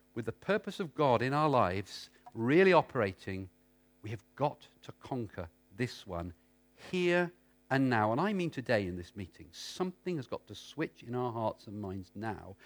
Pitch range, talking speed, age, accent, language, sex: 100-155 Hz, 180 wpm, 50-69, British, English, male